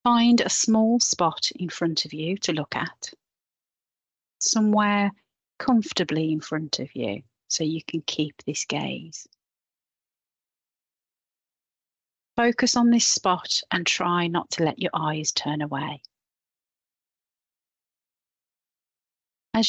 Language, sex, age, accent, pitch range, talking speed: English, female, 40-59, British, 150-195 Hz, 115 wpm